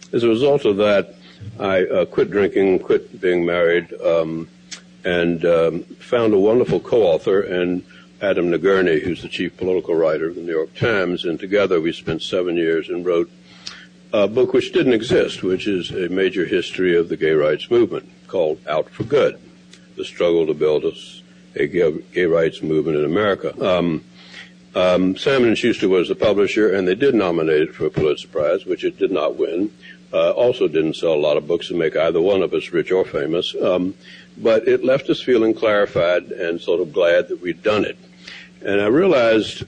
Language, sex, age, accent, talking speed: English, male, 60-79, American, 190 wpm